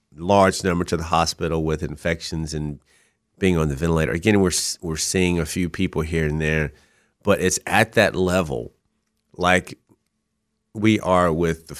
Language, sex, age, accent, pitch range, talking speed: English, male, 30-49, American, 80-100 Hz, 165 wpm